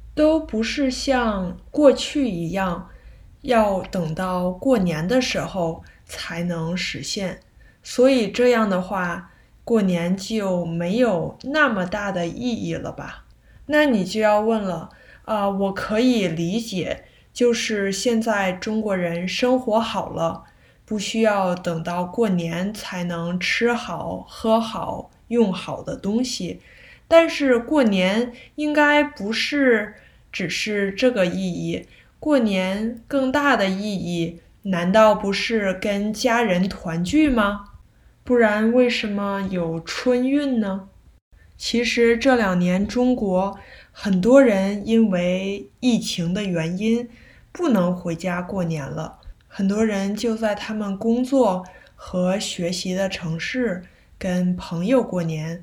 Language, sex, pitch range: Chinese, female, 180-240 Hz